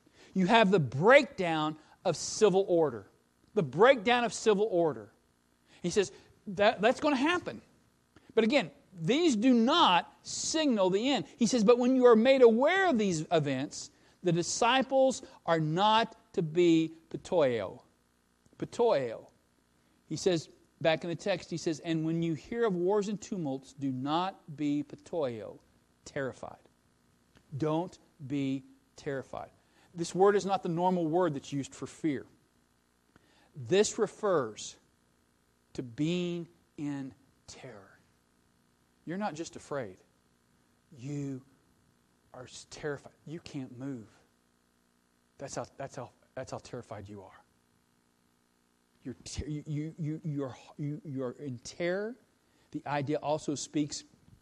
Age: 40-59